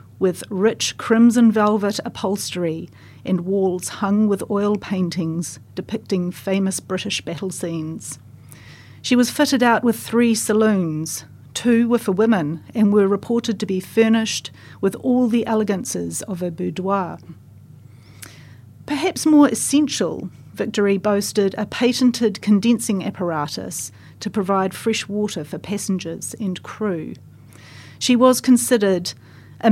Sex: female